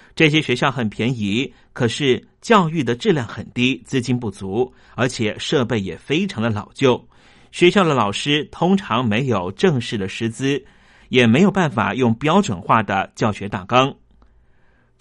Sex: male